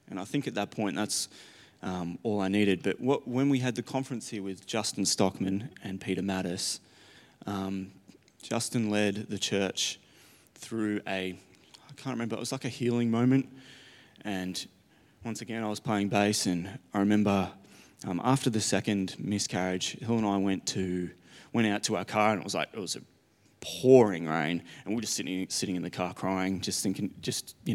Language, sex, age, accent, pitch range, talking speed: English, male, 20-39, Australian, 100-125 Hz, 190 wpm